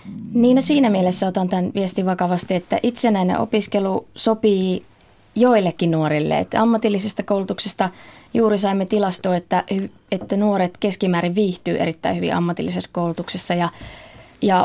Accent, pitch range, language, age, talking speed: native, 165-200 Hz, Finnish, 20-39, 125 wpm